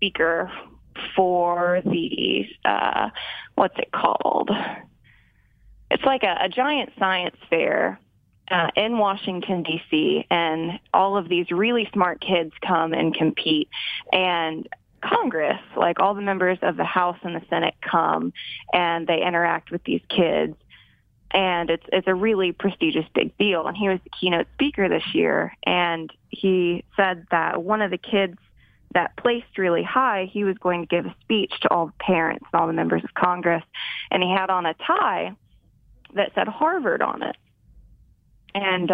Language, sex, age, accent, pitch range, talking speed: English, female, 20-39, American, 170-210 Hz, 160 wpm